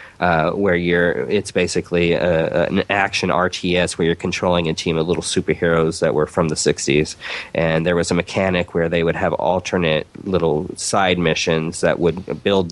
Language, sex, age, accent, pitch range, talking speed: English, male, 30-49, American, 80-95 Hz, 180 wpm